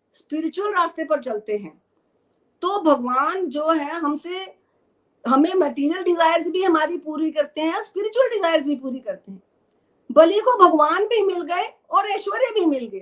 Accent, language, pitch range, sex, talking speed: native, Hindi, 275-350 Hz, female, 135 wpm